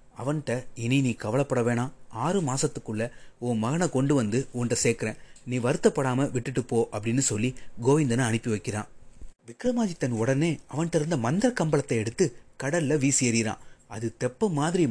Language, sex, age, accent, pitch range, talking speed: Tamil, male, 30-49, native, 115-160 Hz, 135 wpm